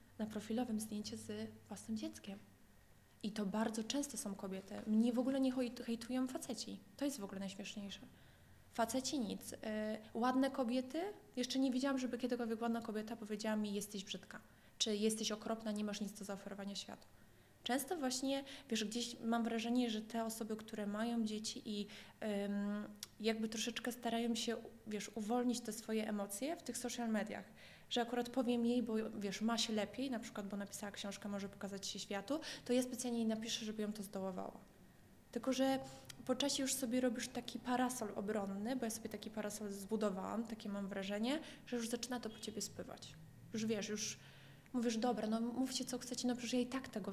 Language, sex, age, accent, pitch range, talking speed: Polish, female, 20-39, native, 210-245 Hz, 180 wpm